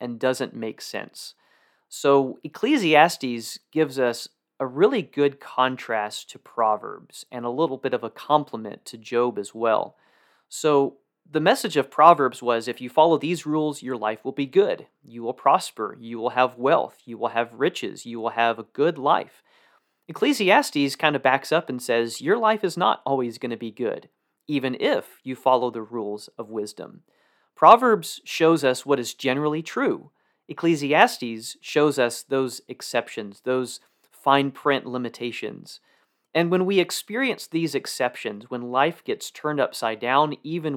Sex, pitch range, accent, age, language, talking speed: male, 120-150 Hz, American, 30-49, English, 165 wpm